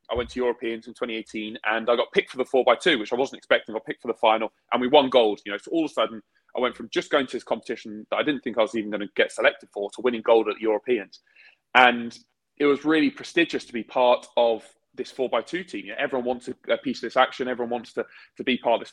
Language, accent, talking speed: English, British, 285 wpm